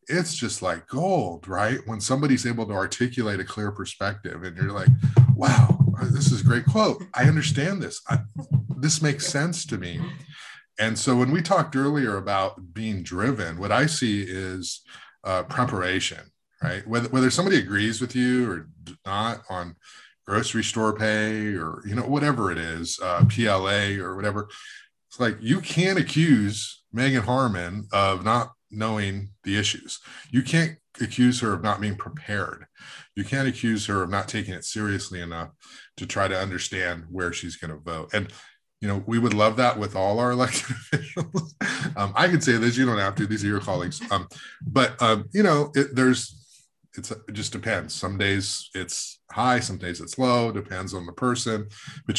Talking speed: 180 wpm